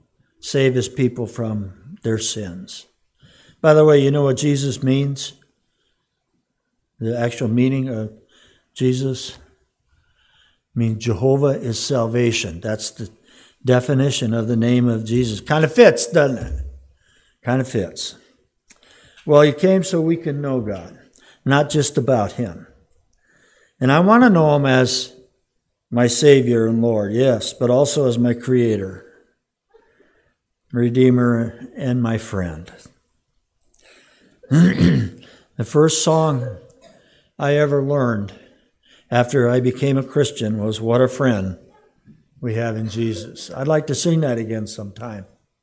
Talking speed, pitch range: 130 wpm, 115-140 Hz